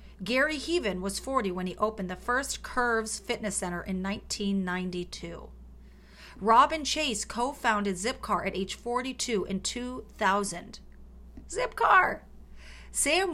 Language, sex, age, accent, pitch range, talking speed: English, female, 40-59, American, 175-225 Hz, 110 wpm